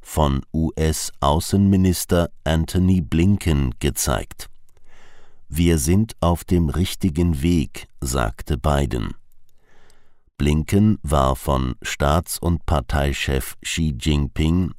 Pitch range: 75-95 Hz